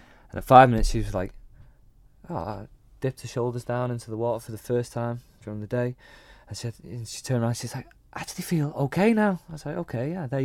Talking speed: 230 wpm